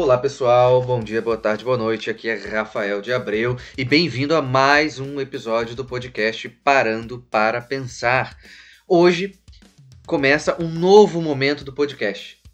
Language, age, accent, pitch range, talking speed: Portuguese, 20-39, Brazilian, 120-150 Hz, 150 wpm